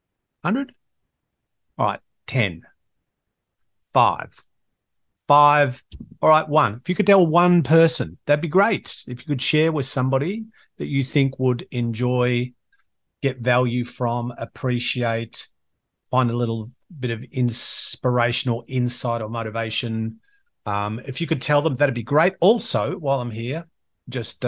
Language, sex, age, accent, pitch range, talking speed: English, male, 50-69, Australian, 115-145 Hz, 135 wpm